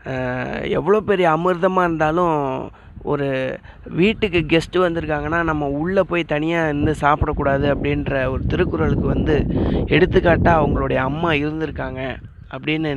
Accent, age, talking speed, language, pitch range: native, 30-49, 105 wpm, Tamil, 135-170 Hz